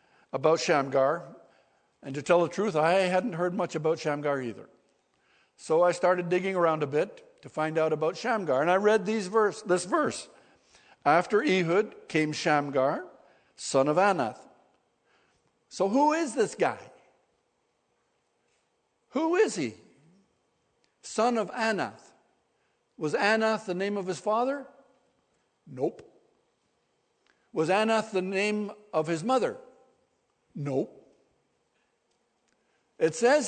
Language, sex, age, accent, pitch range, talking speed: English, male, 60-79, American, 160-230 Hz, 120 wpm